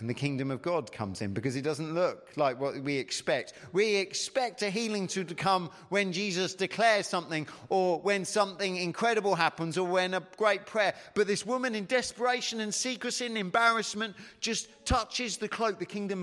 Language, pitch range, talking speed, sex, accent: English, 140-205 Hz, 185 wpm, male, British